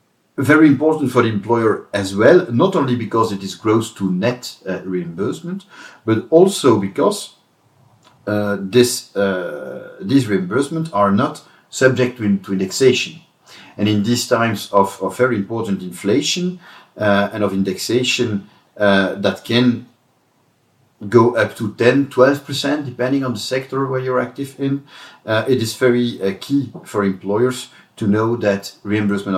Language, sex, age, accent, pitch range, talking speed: English, male, 50-69, French, 100-140 Hz, 150 wpm